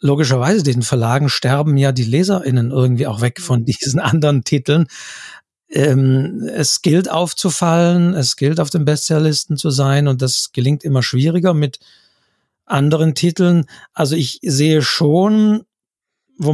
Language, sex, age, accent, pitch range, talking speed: German, male, 50-69, German, 130-165 Hz, 140 wpm